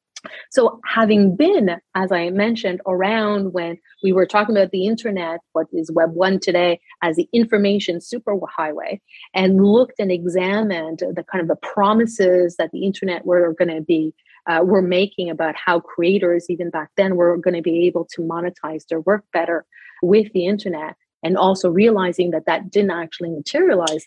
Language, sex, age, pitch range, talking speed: English, female, 30-49, 175-210 Hz, 170 wpm